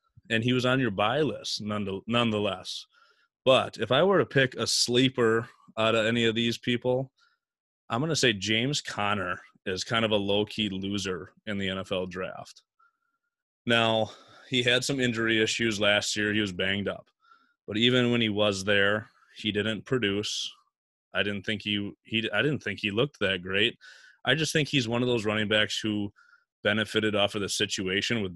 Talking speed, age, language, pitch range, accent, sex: 175 wpm, 20-39, English, 105-125 Hz, American, male